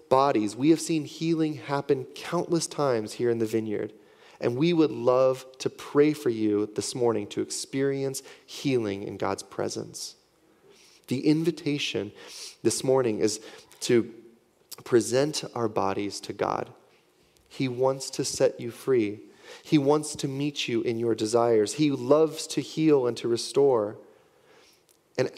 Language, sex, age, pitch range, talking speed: English, male, 30-49, 120-160 Hz, 145 wpm